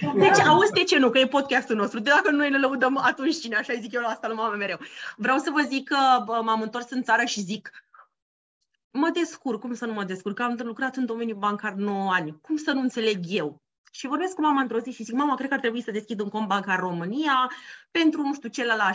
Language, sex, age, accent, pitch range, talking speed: Romanian, female, 30-49, native, 235-310 Hz, 250 wpm